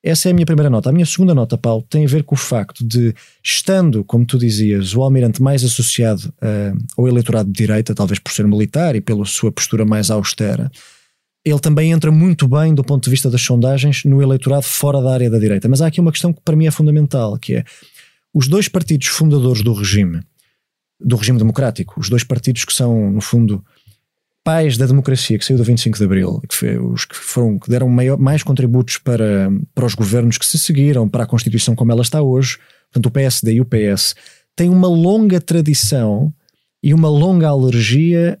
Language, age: Portuguese, 20-39